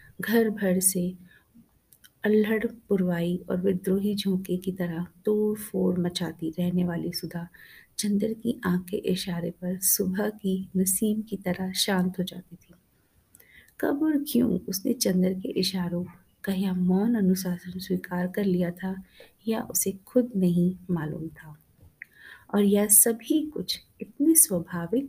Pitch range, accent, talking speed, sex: 180-215 Hz, native, 135 wpm, female